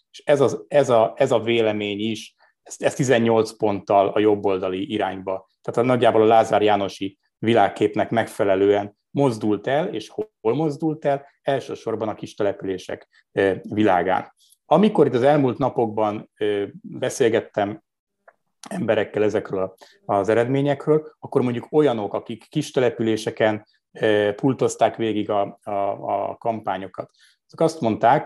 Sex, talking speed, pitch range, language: male, 115 wpm, 105-140 Hz, Hungarian